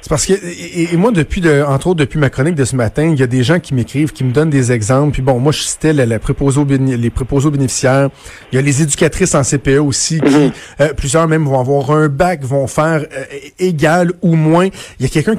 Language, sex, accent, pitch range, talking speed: French, male, Canadian, 140-175 Hz, 255 wpm